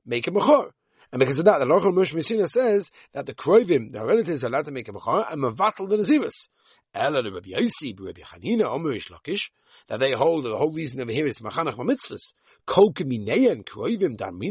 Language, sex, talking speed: English, male, 200 wpm